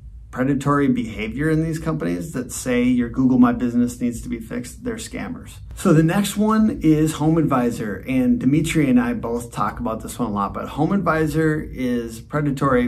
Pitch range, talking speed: 120-150 Hz, 185 wpm